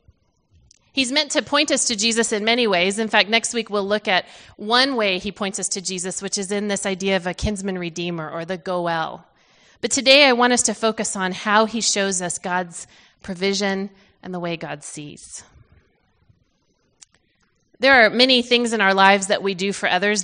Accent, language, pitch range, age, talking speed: American, English, 190-230 Hz, 30-49, 200 wpm